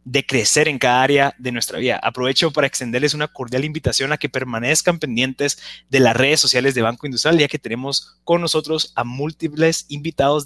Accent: Mexican